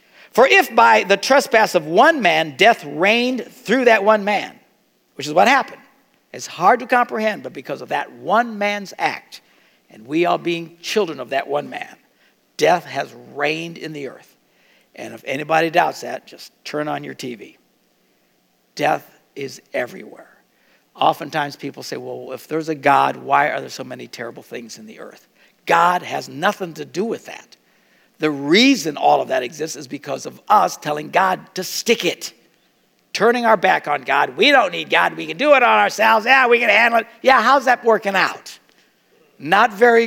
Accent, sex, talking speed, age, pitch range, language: American, male, 185 wpm, 60-79, 165-255 Hz, English